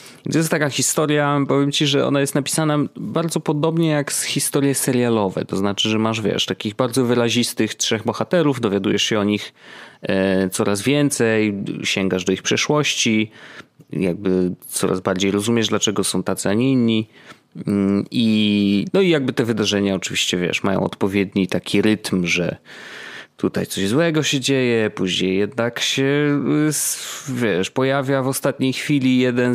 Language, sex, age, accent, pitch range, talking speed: Polish, male, 30-49, native, 100-135 Hz, 145 wpm